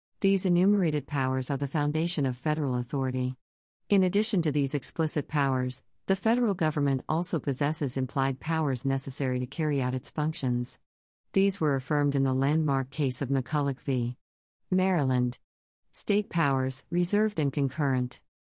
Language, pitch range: English, 130-165 Hz